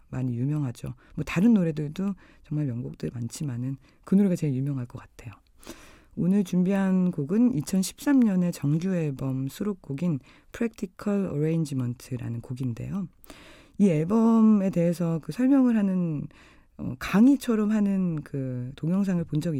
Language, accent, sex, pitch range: Korean, native, female, 140-195 Hz